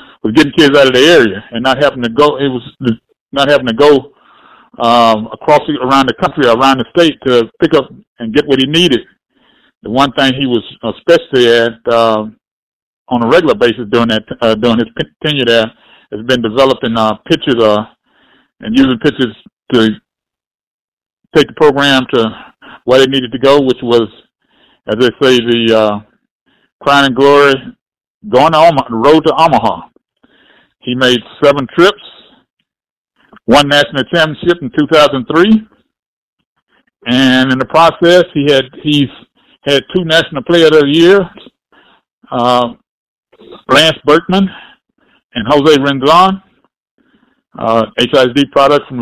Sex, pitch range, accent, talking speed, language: male, 120-150 Hz, American, 150 wpm, English